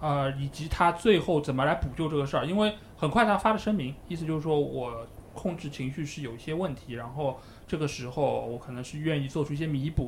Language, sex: Chinese, male